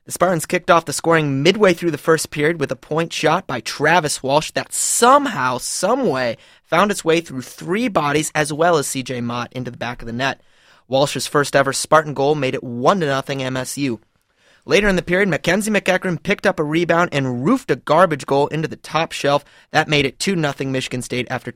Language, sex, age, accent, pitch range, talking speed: English, male, 30-49, American, 130-175 Hz, 205 wpm